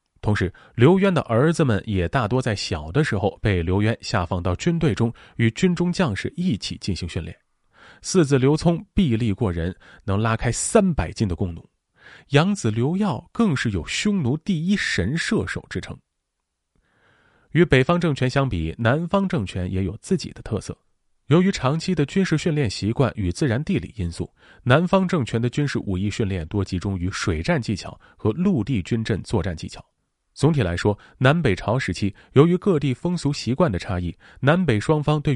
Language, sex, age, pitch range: Chinese, male, 30-49, 100-160 Hz